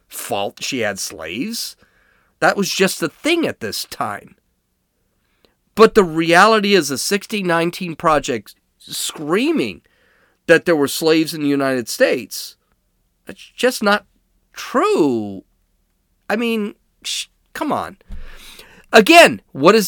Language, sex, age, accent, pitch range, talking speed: English, male, 40-59, American, 170-270 Hz, 120 wpm